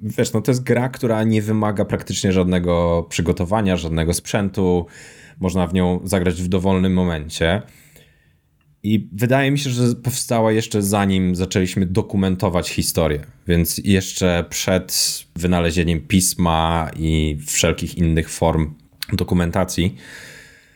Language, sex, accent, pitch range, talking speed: Polish, male, native, 85-110 Hz, 120 wpm